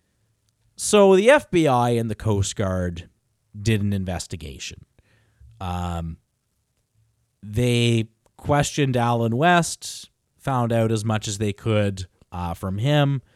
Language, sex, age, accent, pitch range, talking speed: English, male, 30-49, American, 100-145 Hz, 110 wpm